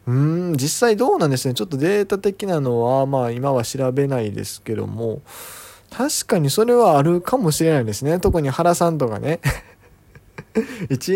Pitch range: 110-155 Hz